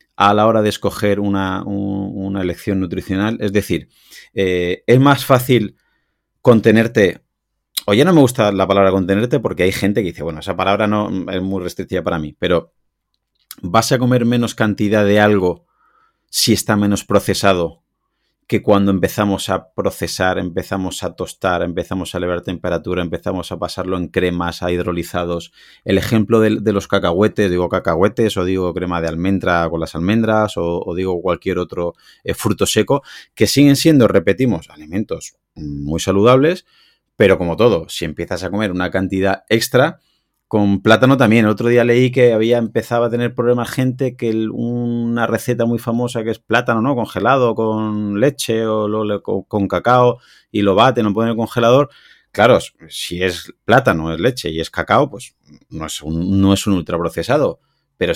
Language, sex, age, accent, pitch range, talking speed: Spanish, male, 30-49, Spanish, 90-115 Hz, 170 wpm